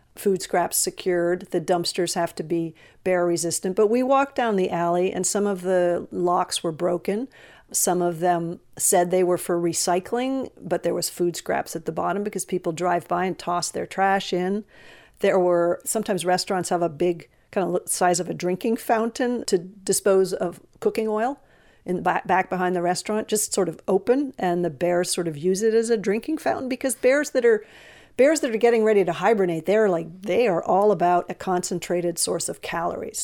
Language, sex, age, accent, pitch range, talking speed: English, female, 50-69, American, 180-220 Hz, 200 wpm